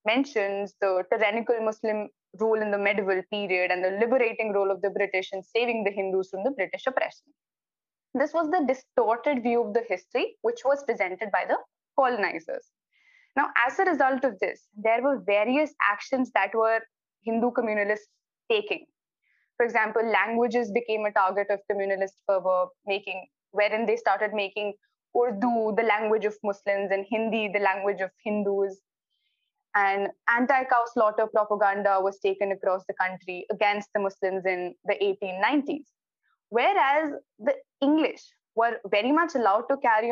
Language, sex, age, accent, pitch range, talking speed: English, female, 20-39, Indian, 200-275 Hz, 155 wpm